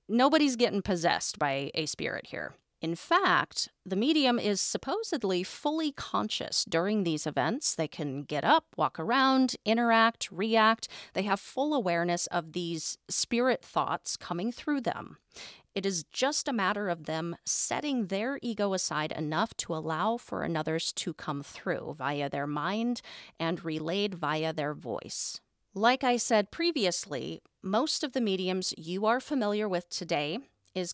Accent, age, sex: American, 30-49, female